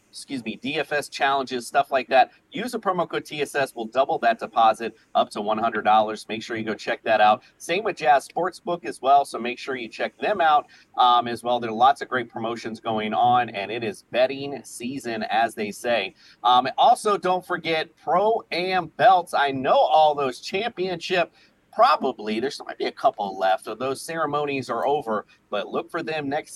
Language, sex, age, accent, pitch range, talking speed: English, male, 30-49, American, 115-165 Hz, 195 wpm